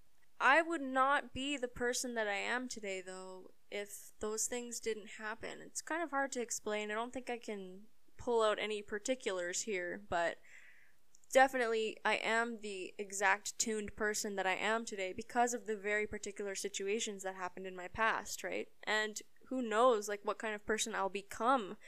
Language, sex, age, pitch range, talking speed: English, female, 10-29, 200-240 Hz, 180 wpm